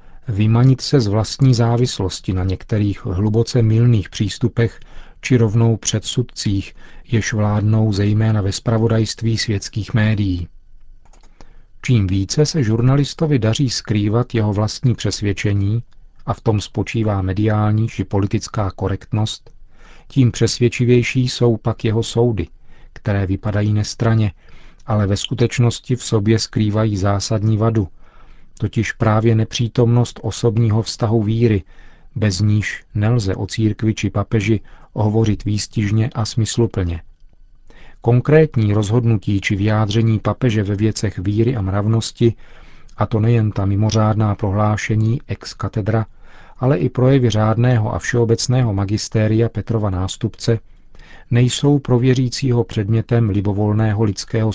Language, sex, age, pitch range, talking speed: Czech, male, 40-59, 105-120 Hz, 110 wpm